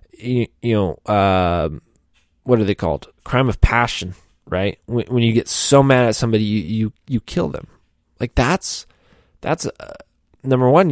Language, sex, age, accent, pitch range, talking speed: English, male, 20-39, American, 95-125 Hz, 170 wpm